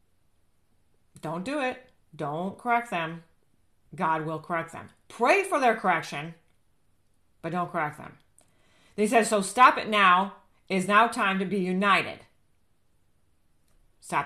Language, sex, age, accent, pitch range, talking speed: English, female, 40-59, American, 155-220 Hz, 135 wpm